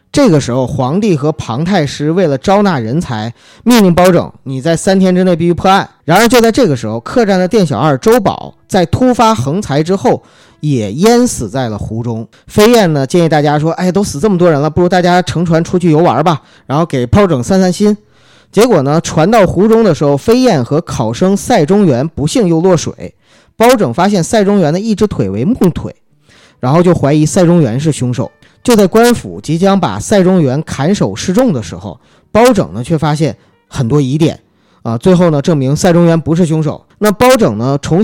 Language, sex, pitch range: Chinese, male, 140-195 Hz